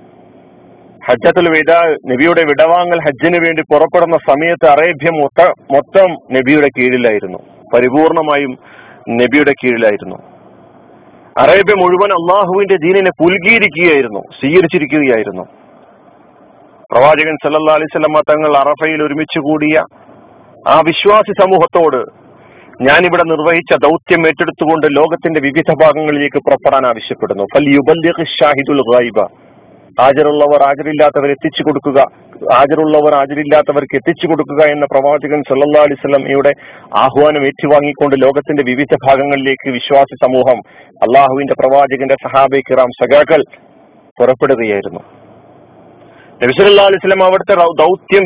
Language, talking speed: Malayalam, 80 wpm